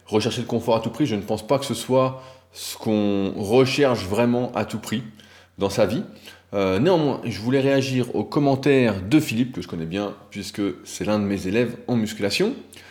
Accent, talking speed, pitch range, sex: French, 205 wpm, 105-145 Hz, male